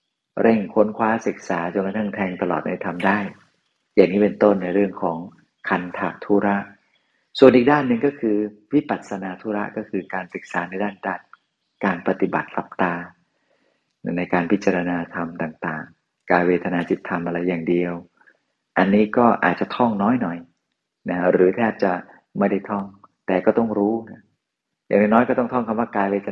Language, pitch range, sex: Thai, 90-105 Hz, male